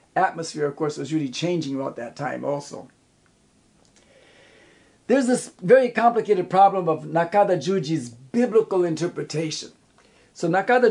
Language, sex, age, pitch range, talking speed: English, male, 60-79, 165-215 Hz, 120 wpm